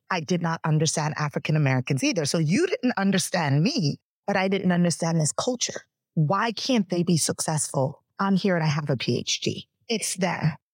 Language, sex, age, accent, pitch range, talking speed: English, female, 30-49, American, 150-190 Hz, 175 wpm